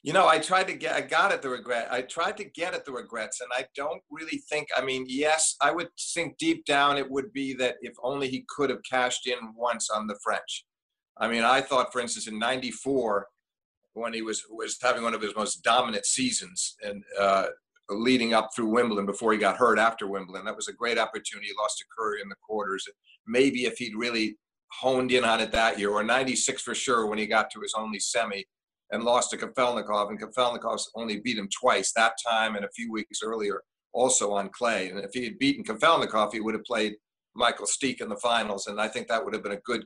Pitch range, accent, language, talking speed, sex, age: 110-155 Hz, American, English, 230 wpm, male, 50-69